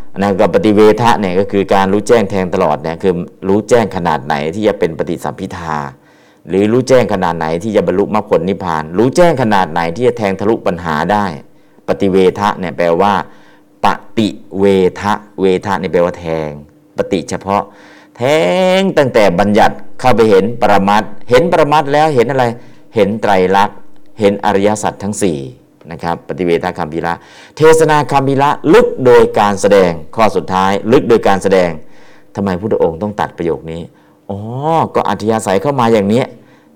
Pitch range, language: 95-135 Hz, Thai